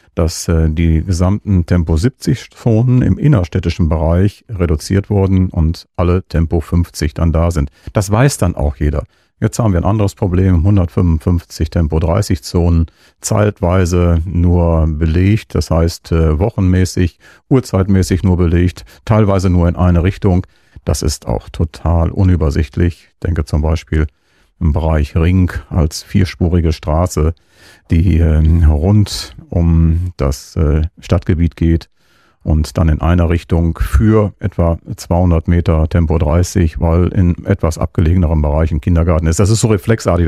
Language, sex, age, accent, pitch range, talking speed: German, male, 40-59, German, 80-95 Hz, 125 wpm